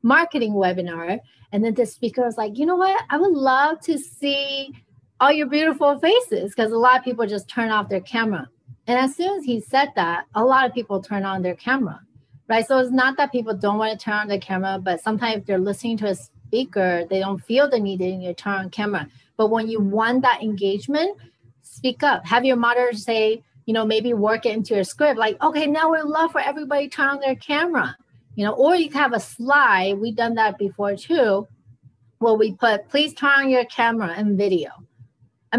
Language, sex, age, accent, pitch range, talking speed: English, female, 40-59, American, 190-255 Hz, 225 wpm